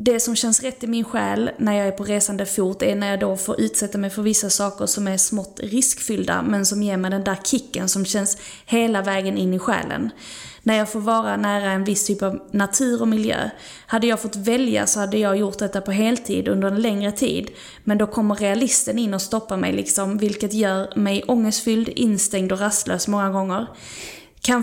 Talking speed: 210 wpm